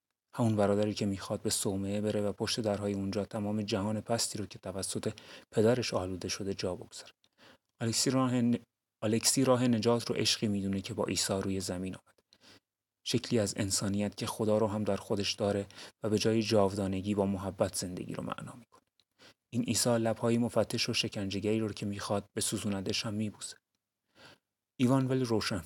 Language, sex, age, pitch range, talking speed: Persian, male, 30-49, 100-115 Hz, 170 wpm